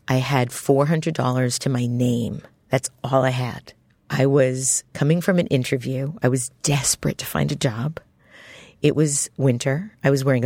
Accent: American